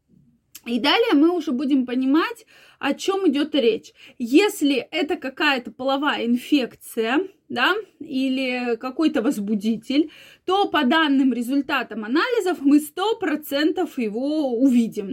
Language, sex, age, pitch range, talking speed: Russian, female, 20-39, 240-315 Hz, 110 wpm